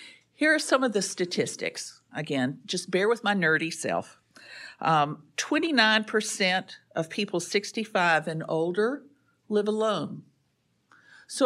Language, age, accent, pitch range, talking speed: English, 50-69, American, 160-230 Hz, 120 wpm